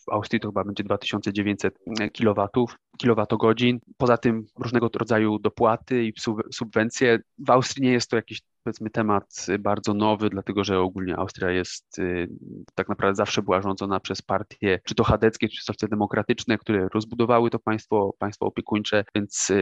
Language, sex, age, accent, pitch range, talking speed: Polish, male, 20-39, native, 100-115 Hz, 155 wpm